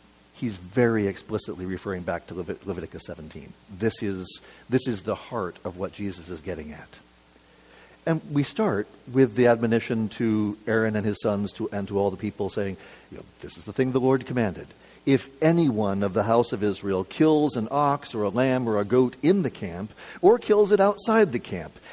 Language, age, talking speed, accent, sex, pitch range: English, 50-69, 200 wpm, American, male, 80-125 Hz